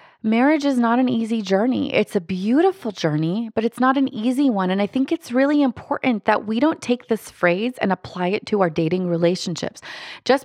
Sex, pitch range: female, 180-240 Hz